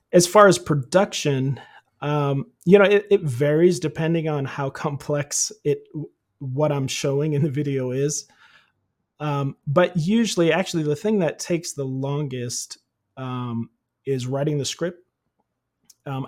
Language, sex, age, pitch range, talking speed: English, male, 30-49, 135-155 Hz, 140 wpm